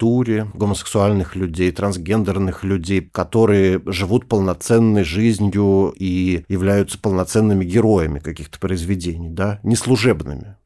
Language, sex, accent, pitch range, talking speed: Russian, male, native, 90-110 Hz, 95 wpm